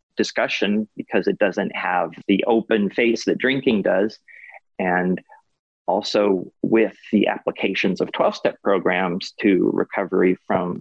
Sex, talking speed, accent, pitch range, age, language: male, 130 wpm, American, 100-130 Hz, 30-49, English